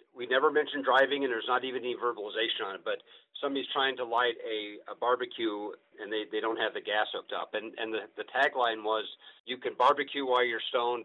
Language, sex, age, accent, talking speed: English, male, 50-69, American, 225 wpm